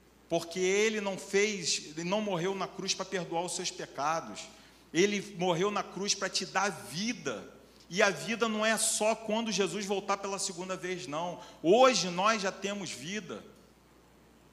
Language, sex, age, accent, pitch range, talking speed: Portuguese, male, 40-59, Brazilian, 180-215 Hz, 160 wpm